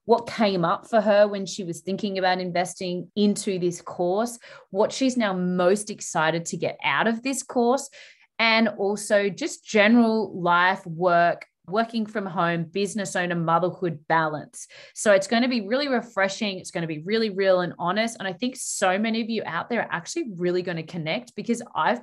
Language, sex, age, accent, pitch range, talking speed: English, female, 20-39, Australian, 175-225 Hz, 190 wpm